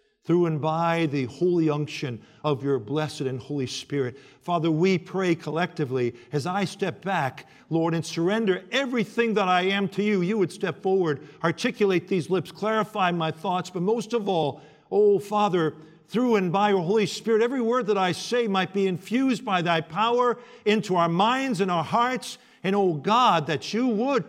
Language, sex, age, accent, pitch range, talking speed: English, male, 50-69, American, 130-195 Hz, 185 wpm